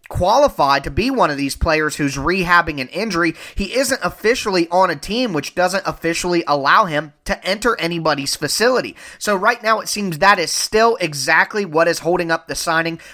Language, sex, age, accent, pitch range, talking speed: English, male, 30-49, American, 155-195 Hz, 185 wpm